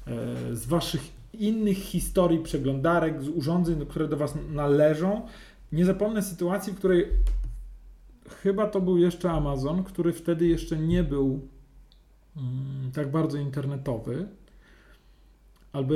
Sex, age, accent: male, 40-59, native